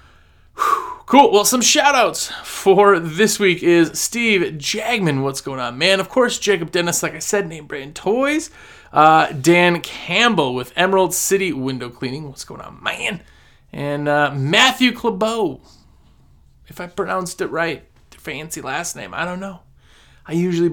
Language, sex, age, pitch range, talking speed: English, male, 20-39, 150-205 Hz, 150 wpm